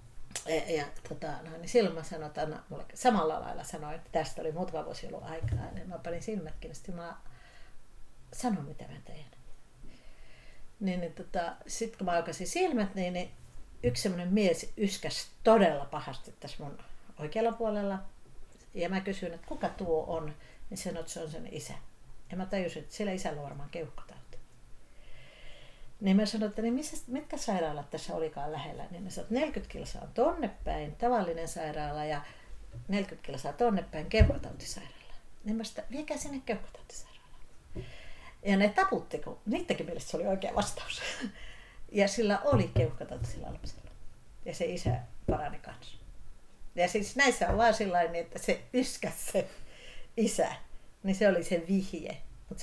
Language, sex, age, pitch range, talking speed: Finnish, female, 60-79, 160-215 Hz, 155 wpm